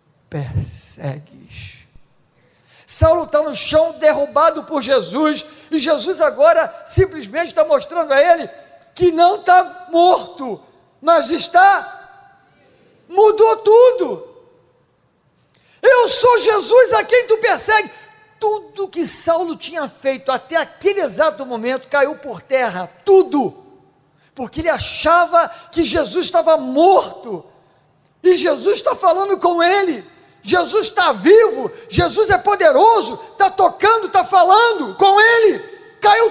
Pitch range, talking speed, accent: 320-450 Hz, 115 wpm, Brazilian